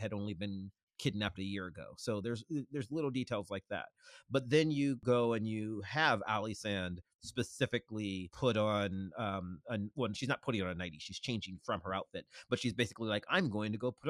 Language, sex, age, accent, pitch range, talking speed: English, male, 30-49, American, 100-130 Hz, 215 wpm